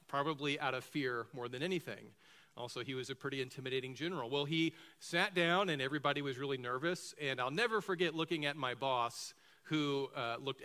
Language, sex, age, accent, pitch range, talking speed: English, male, 40-59, American, 125-165 Hz, 190 wpm